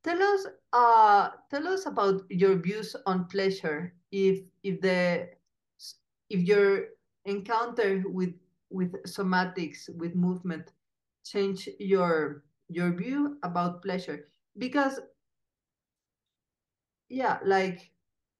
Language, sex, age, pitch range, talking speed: English, female, 40-59, 175-200 Hz, 100 wpm